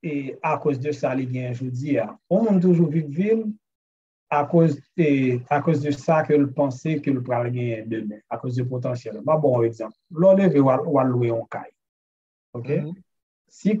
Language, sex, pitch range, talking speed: French, male, 125-170 Hz, 155 wpm